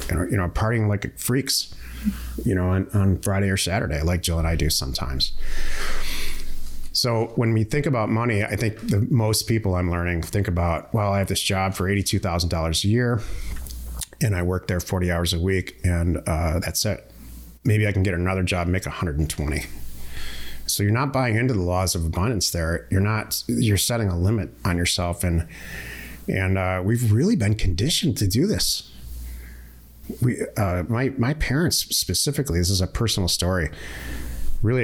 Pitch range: 80-105 Hz